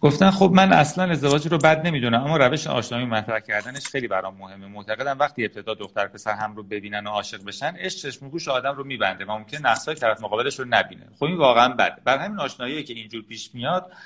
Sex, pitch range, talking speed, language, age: male, 110-175 Hz, 220 wpm, Persian, 30-49